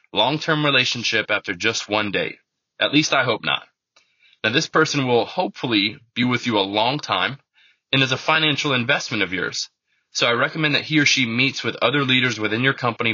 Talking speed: 195 wpm